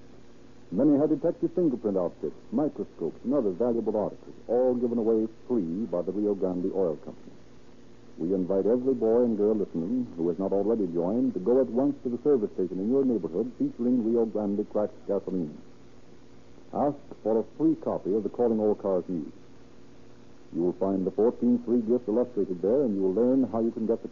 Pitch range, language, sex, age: 100-130 Hz, English, male, 60-79